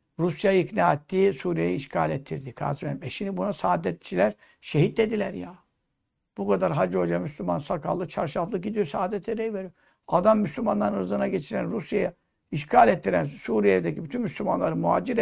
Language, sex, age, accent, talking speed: Turkish, male, 60-79, native, 140 wpm